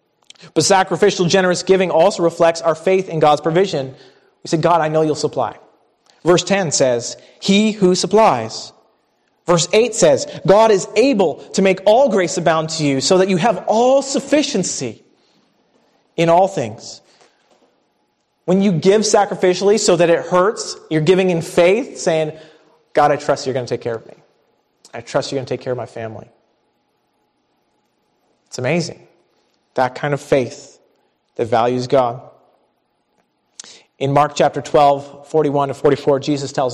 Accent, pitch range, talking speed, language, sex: American, 140-185 Hz, 160 wpm, English, male